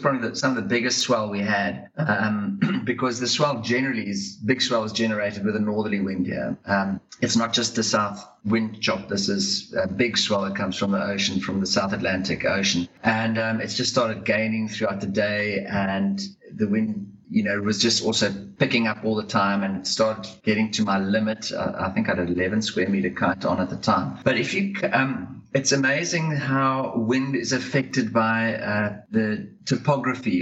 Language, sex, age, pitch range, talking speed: English, male, 30-49, 105-130 Hz, 200 wpm